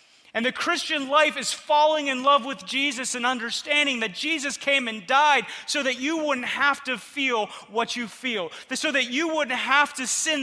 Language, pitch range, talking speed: English, 230-290 Hz, 195 wpm